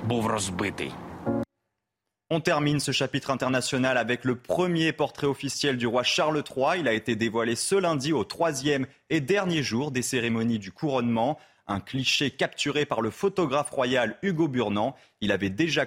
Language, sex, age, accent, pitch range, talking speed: French, male, 30-49, French, 115-150 Hz, 155 wpm